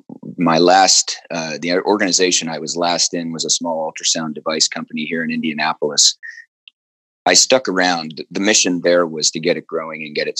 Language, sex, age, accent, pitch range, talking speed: English, male, 30-49, American, 75-85 Hz, 185 wpm